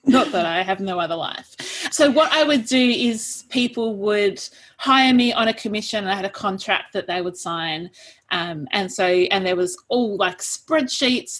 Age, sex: 30-49, female